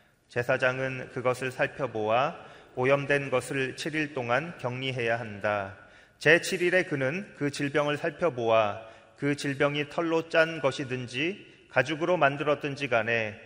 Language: Korean